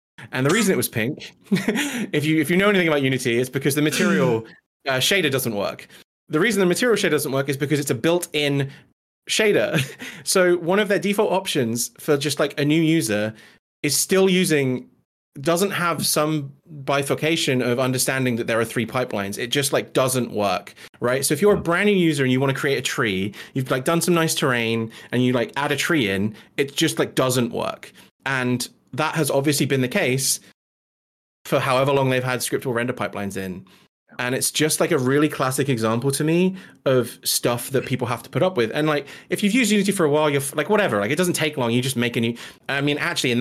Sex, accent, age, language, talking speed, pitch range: male, British, 30-49, English, 220 wpm, 120-155 Hz